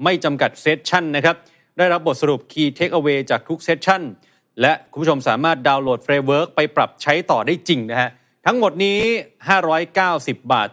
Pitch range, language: 130-165 Hz, Thai